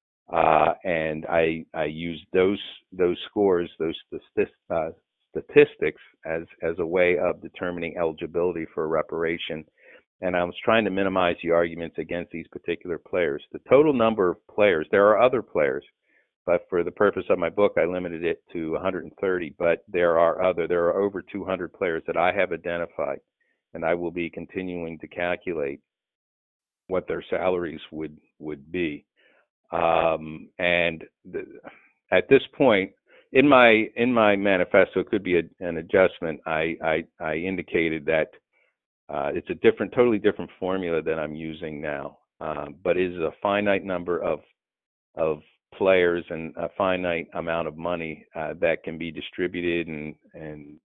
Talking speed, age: 160 wpm, 50-69